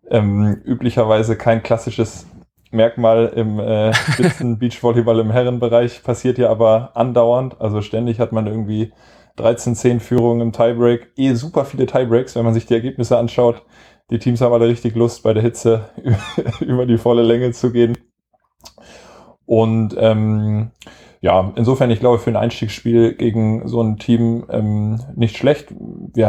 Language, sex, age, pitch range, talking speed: German, male, 20-39, 105-120 Hz, 150 wpm